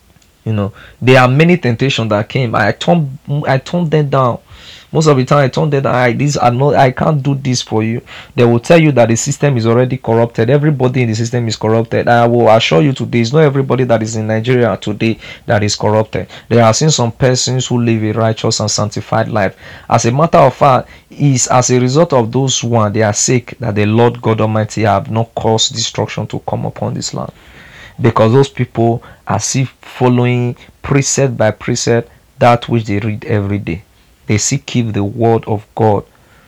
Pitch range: 110-130 Hz